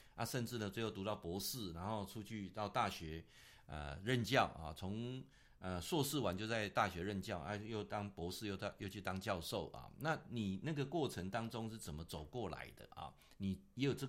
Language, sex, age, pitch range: Chinese, male, 50-69, 100-140 Hz